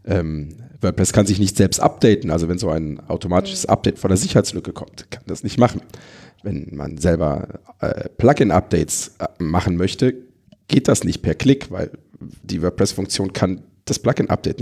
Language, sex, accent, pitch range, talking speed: German, male, German, 90-115 Hz, 160 wpm